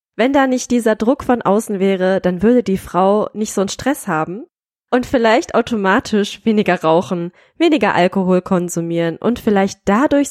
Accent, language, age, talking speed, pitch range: German, German, 20-39, 165 wpm, 180-230 Hz